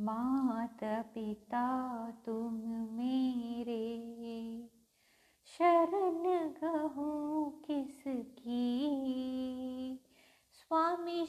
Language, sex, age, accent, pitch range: Bengali, female, 30-49, native, 230-295 Hz